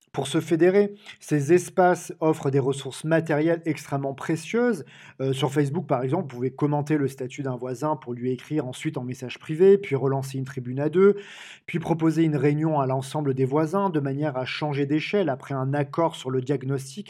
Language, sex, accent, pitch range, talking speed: French, male, French, 135-175 Hz, 195 wpm